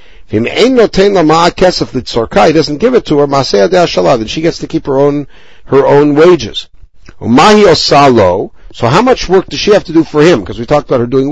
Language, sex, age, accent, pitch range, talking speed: English, male, 60-79, American, 120-165 Hz, 180 wpm